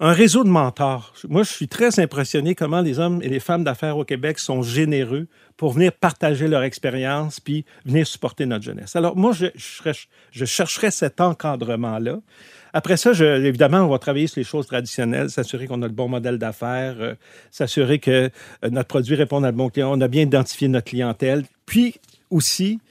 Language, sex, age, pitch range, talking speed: French, male, 50-69, 130-170 Hz, 195 wpm